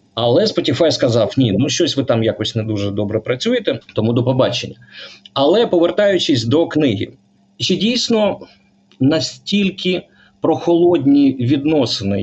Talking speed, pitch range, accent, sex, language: 125 wpm, 110-140 Hz, native, male, Ukrainian